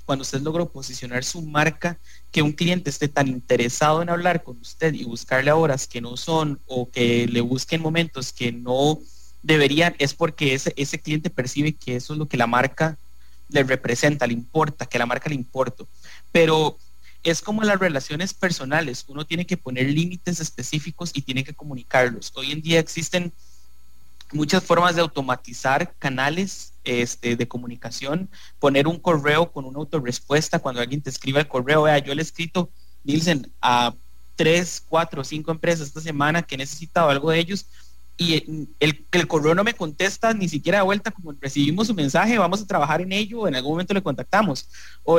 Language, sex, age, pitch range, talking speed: English, male, 30-49, 130-170 Hz, 185 wpm